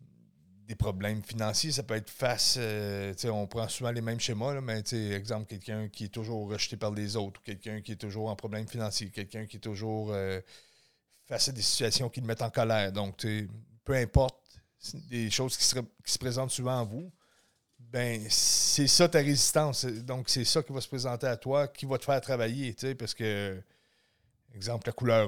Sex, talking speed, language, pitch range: male, 205 wpm, French, 110-130 Hz